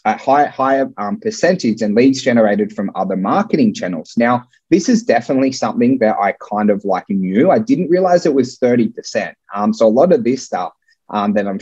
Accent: Australian